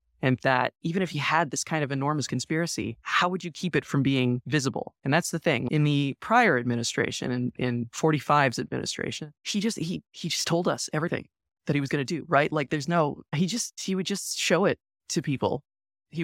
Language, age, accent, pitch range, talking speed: English, 20-39, American, 125-150 Hz, 215 wpm